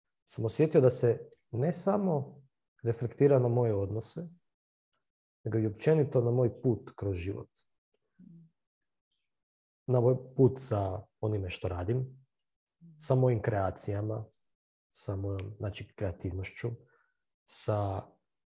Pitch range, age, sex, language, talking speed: 100-135 Hz, 40-59, male, Croatian, 105 wpm